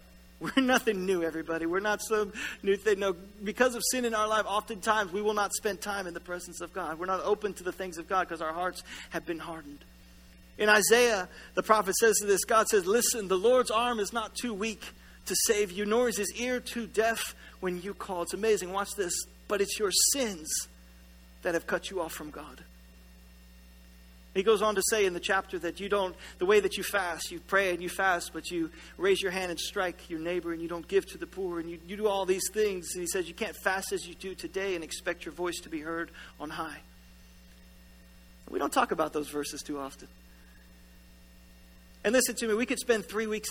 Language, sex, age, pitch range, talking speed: English, male, 40-59, 160-215 Hz, 230 wpm